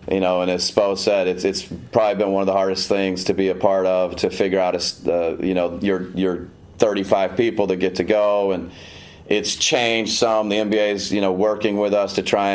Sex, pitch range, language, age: male, 95-105 Hz, English, 30-49